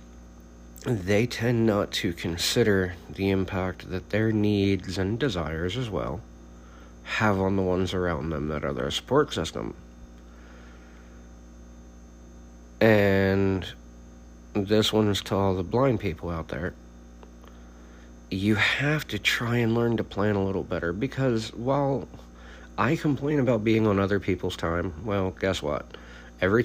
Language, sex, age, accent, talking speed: English, male, 50-69, American, 135 wpm